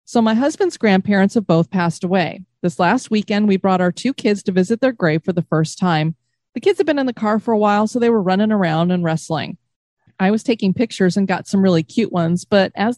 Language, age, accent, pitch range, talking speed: English, 30-49, American, 175-235 Hz, 245 wpm